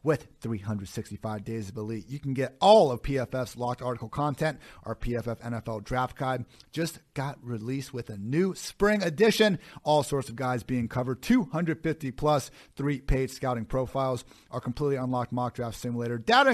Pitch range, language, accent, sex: 125-155 Hz, English, American, male